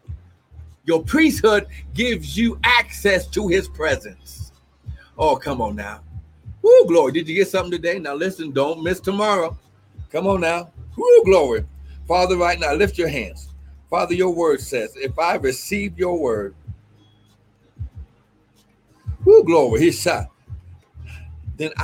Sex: male